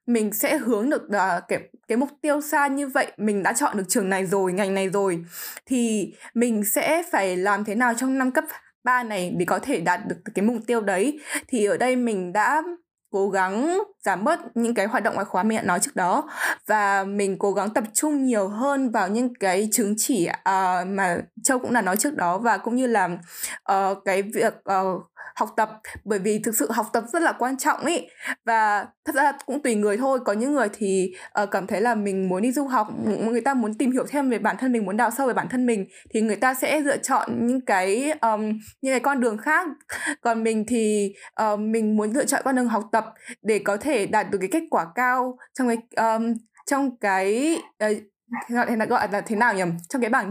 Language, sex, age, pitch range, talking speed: Vietnamese, female, 10-29, 200-265 Hz, 230 wpm